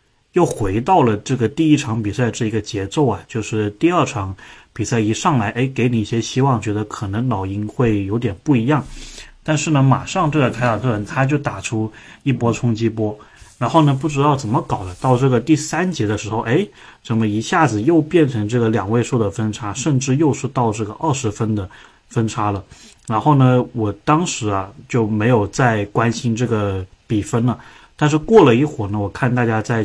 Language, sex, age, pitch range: Chinese, male, 20-39, 105-130 Hz